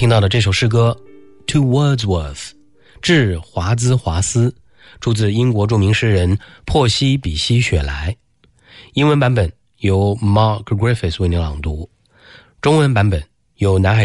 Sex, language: male, English